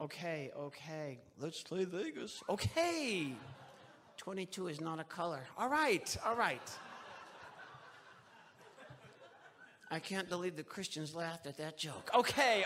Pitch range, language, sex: 145-180 Hz, English, male